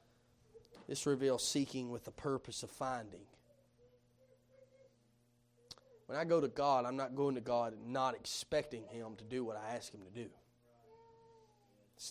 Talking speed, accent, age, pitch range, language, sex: 155 wpm, American, 30-49, 120-175 Hz, English, male